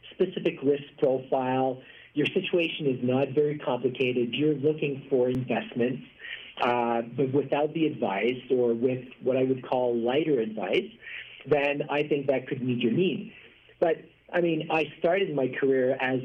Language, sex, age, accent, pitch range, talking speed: English, male, 50-69, American, 125-150 Hz, 155 wpm